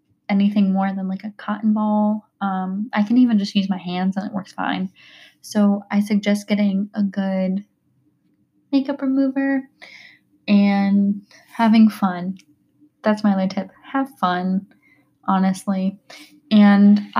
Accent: American